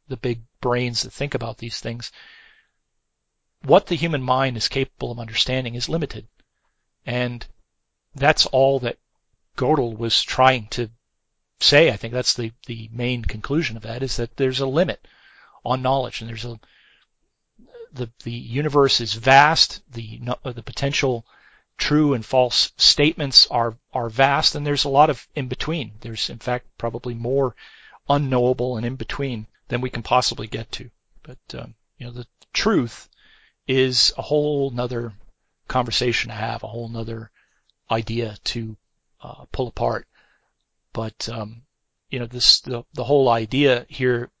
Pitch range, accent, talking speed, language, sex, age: 115-130 Hz, American, 155 wpm, English, male, 40-59